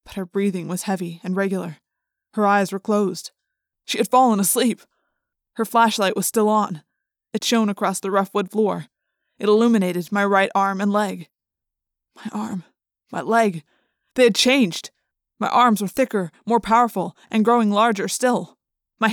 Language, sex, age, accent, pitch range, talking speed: English, female, 20-39, American, 200-260 Hz, 165 wpm